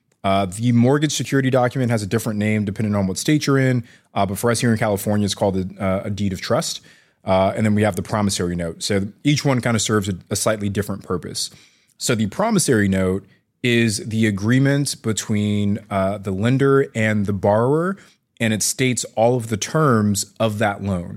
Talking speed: 205 wpm